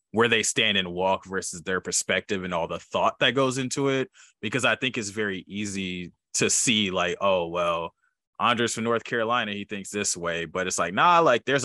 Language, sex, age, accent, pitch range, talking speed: English, male, 20-39, American, 90-110 Hz, 210 wpm